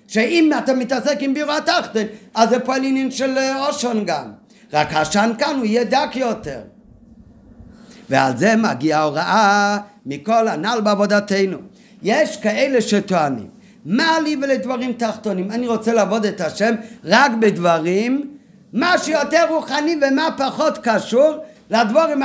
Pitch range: 205-265 Hz